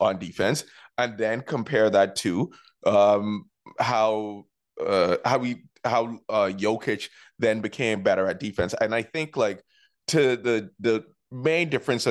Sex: male